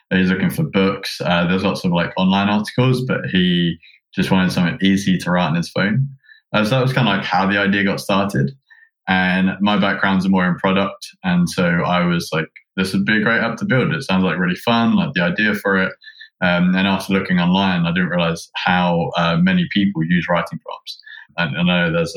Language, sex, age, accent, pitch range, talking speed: English, male, 20-39, British, 90-145 Hz, 225 wpm